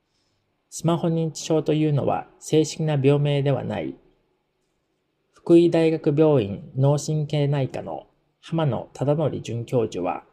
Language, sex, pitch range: Japanese, male, 130-160 Hz